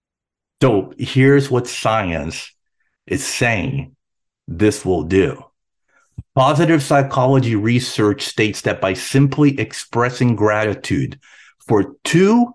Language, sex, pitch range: English, male, 110-145 Hz